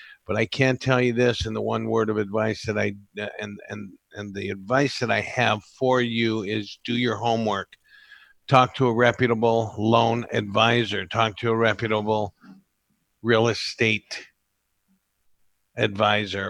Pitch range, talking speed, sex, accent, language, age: 110-130 Hz, 150 wpm, male, American, English, 50-69